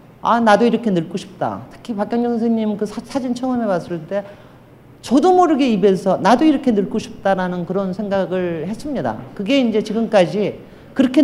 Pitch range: 185-255 Hz